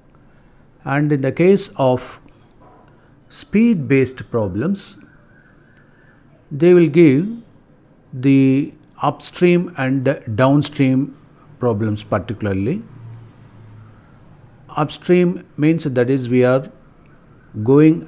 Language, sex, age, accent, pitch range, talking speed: Tamil, male, 60-79, native, 120-155 Hz, 85 wpm